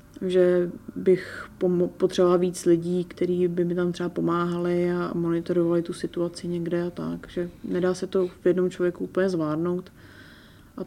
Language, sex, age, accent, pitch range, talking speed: Czech, female, 30-49, native, 175-190 Hz, 155 wpm